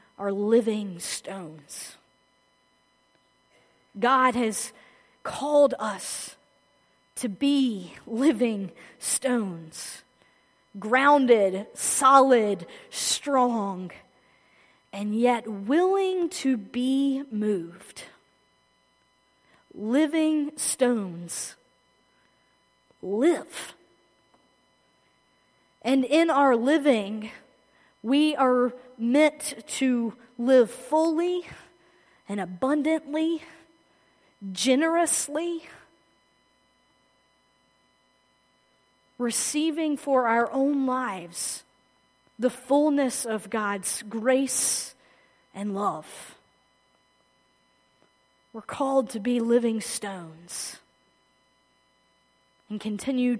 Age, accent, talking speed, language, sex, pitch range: 30-49, American, 65 wpm, English, female, 205-275 Hz